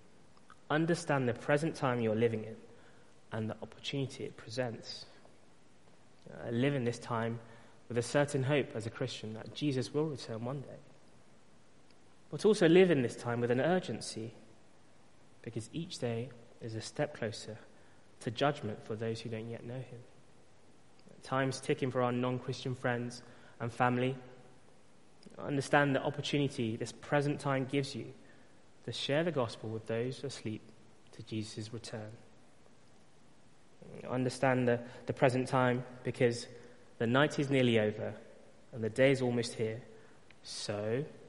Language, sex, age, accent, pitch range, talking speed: English, male, 20-39, British, 115-140 Hz, 140 wpm